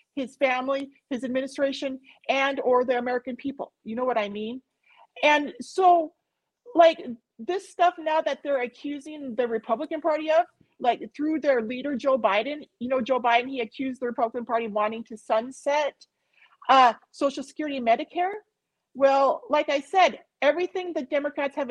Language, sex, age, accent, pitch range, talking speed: English, female, 40-59, American, 245-325 Hz, 165 wpm